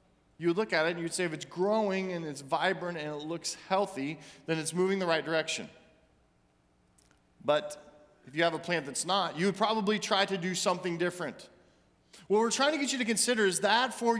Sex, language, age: male, English, 40-59